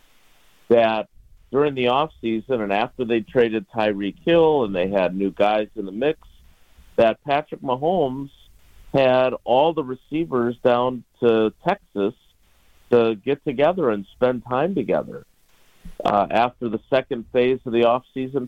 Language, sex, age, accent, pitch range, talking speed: English, male, 50-69, American, 100-135 Hz, 145 wpm